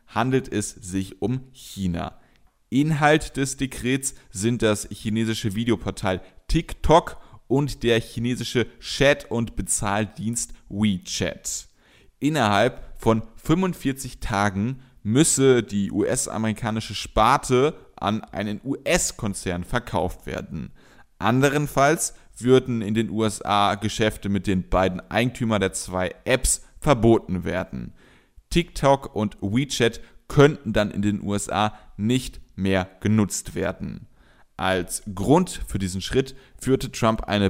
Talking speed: 110 wpm